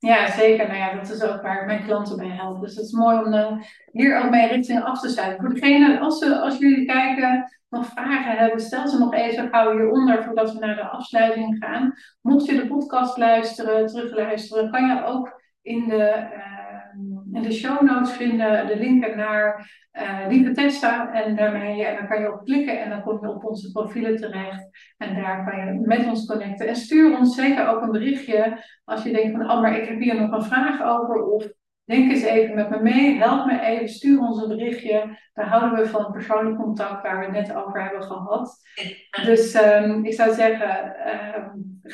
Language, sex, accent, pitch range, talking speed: Dutch, female, Dutch, 210-235 Hz, 210 wpm